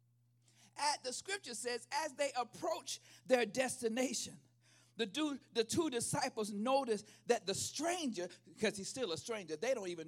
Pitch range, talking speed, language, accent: 235-315 Hz, 145 wpm, English, American